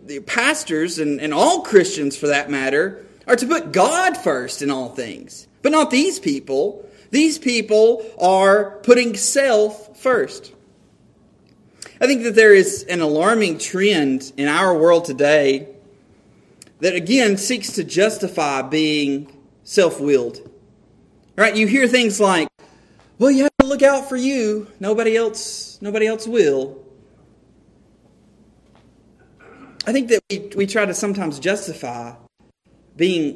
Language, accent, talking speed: English, American, 130 wpm